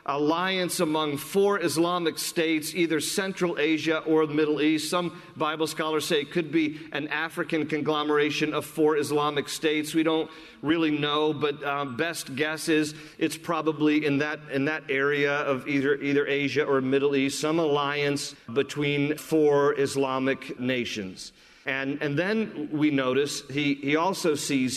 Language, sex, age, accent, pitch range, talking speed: English, male, 40-59, American, 140-160 Hz, 155 wpm